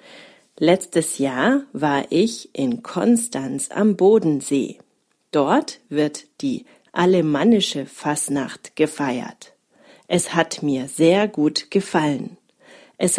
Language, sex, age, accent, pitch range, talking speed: German, female, 40-59, German, 150-225 Hz, 95 wpm